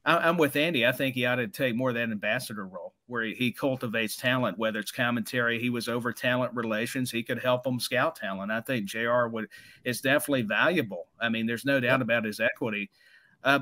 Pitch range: 125-150 Hz